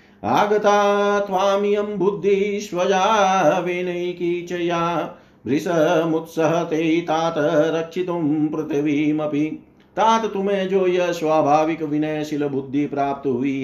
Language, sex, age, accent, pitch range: Hindi, male, 50-69, native, 145-180 Hz